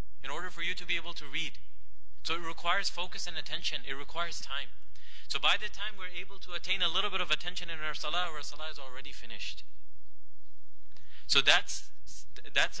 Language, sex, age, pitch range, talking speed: English, male, 20-39, 90-150 Hz, 195 wpm